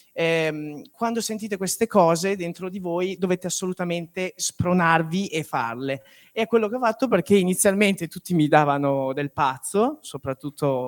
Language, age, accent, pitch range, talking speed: Italian, 30-49, native, 140-180 Hz, 145 wpm